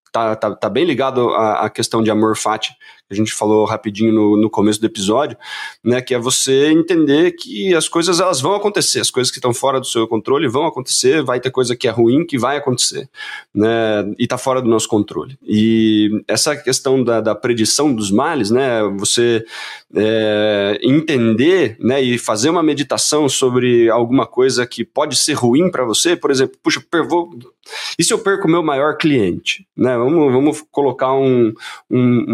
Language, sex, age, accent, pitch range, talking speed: Portuguese, male, 20-39, Brazilian, 115-170 Hz, 185 wpm